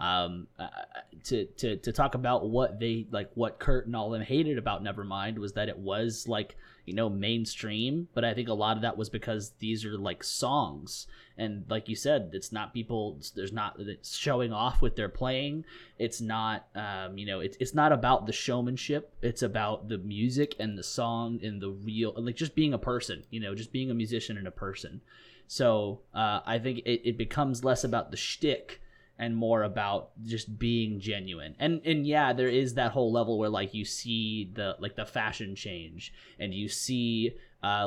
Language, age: English, 20-39